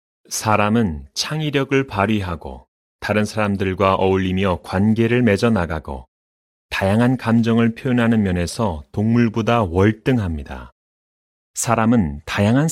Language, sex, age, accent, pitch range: Korean, male, 30-49, native, 90-125 Hz